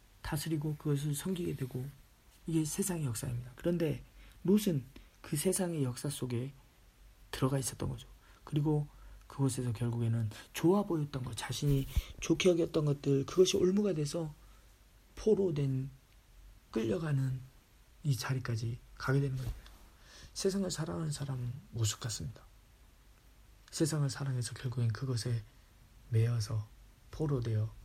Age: 40-59